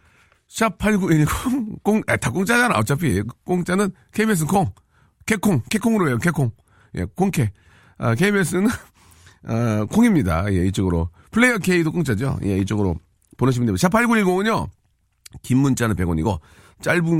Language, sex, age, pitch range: Korean, male, 40-59, 105-175 Hz